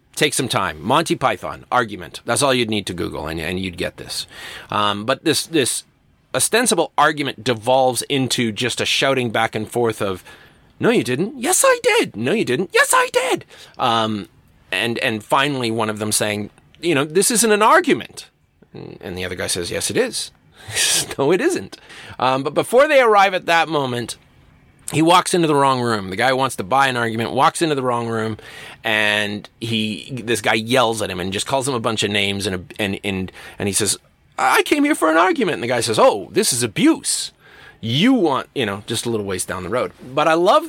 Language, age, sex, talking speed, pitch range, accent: English, 30-49, male, 215 wpm, 110-170 Hz, American